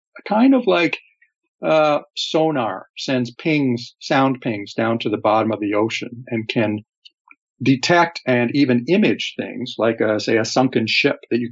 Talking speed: 160 wpm